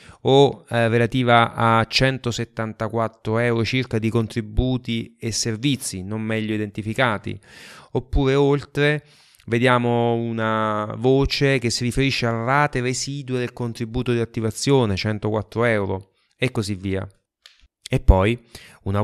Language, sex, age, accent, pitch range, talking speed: Italian, male, 30-49, native, 105-130 Hz, 115 wpm